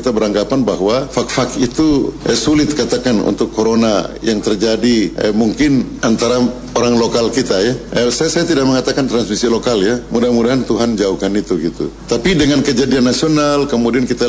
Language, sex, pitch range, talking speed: Indonesian, male, 115-140 Hz, 160 wpm